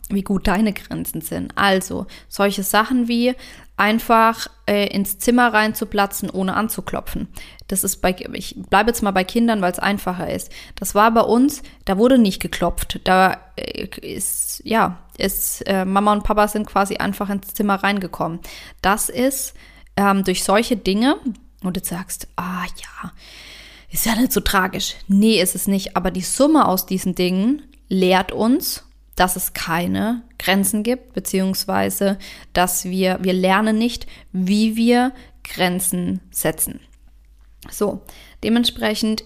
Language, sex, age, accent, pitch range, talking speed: German, female, 20-39, German, 185-225 Hz, 150 wpm